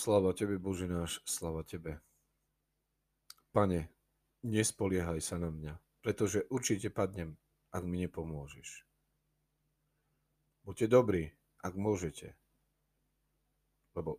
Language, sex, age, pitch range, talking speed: Slovak, male, 40-59, 85-100 Hz, 95 wpm